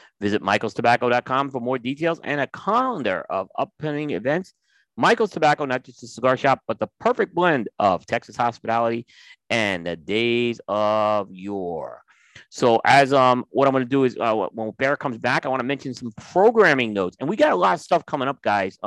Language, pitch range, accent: English, 115-150 Hz, American